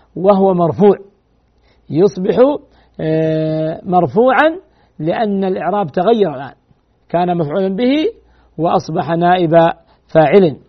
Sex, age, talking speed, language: male, 50-69, 80 wpm, Arabic